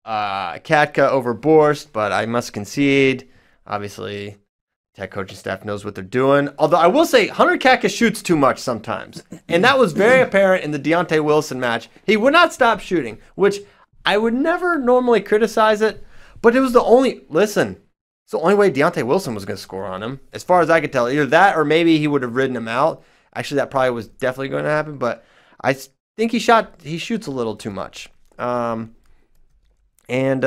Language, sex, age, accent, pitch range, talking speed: English, male, 30-49, American, 120-175 Hz, 205 wpm